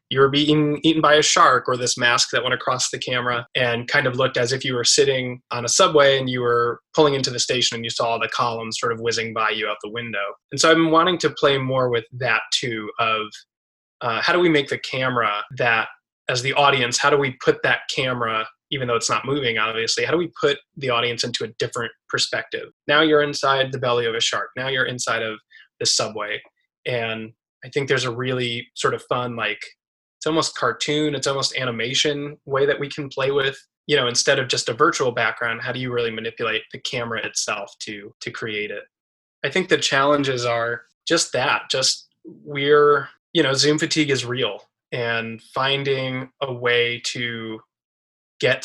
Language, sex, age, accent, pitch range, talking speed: English, male, 20-39, American, 120-145 Hz, 210 wpm